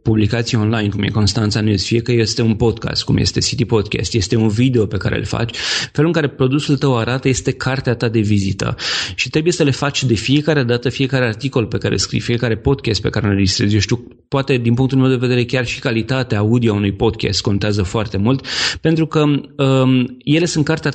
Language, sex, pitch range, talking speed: Romanian, male, 110-140 Hz, 220 wpm